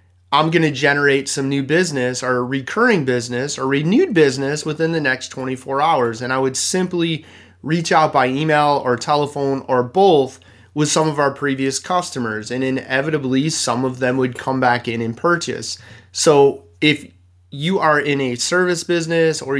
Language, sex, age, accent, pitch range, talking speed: English, male, 30-49, American, 130-165 Hz, 170 wpm